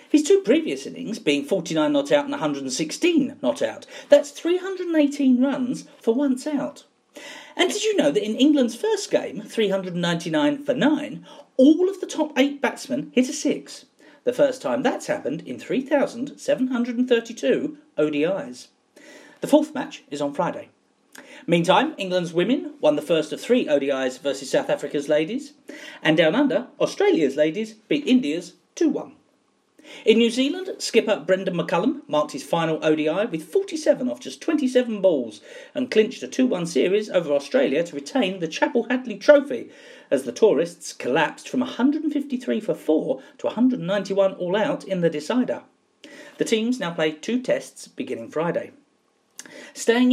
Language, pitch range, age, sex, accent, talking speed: English, 195-290 Hz, 40-59, male, British, 150 wpm